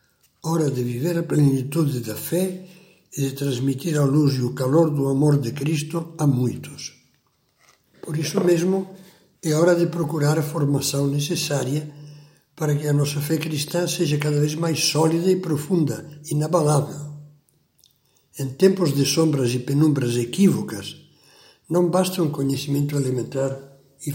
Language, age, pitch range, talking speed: Portuguese, 60-79, 135-170 Hz, 145 wpm